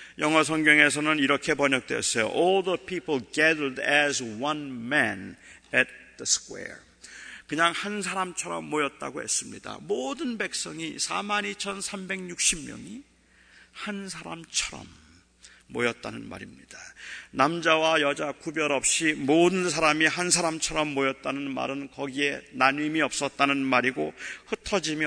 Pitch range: 145-195 Hz